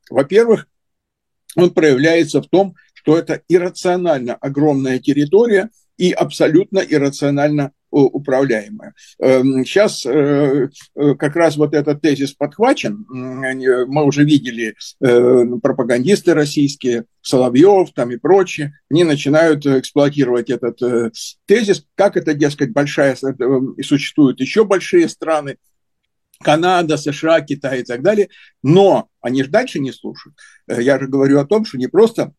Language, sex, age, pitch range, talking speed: Russian, male, 60-79, 135-180 Hz, 120 wpm